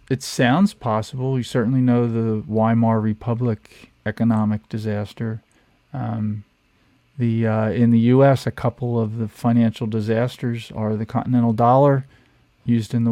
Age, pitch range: 40-59, 110-130 Hz